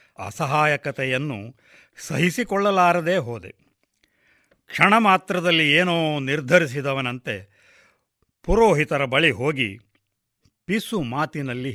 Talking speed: 60 wpm